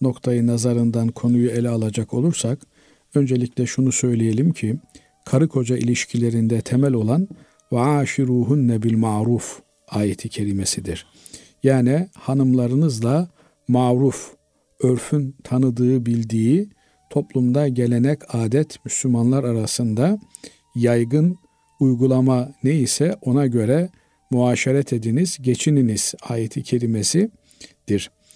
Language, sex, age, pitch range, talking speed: Turkish, male, 50-69, 120-150 Hz, 90 wpm